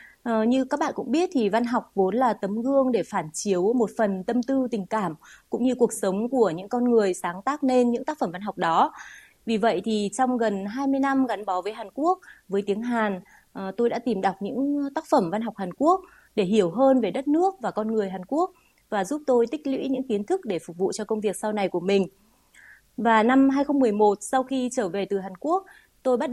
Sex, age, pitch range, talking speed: female, 20-39, 200-255 Hz, 240 wpm